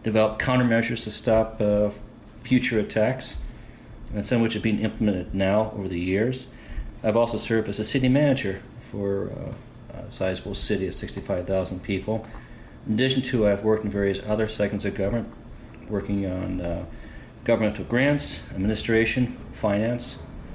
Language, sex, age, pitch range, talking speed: English, male, 40-59, 95-115 Hz, 145 wpm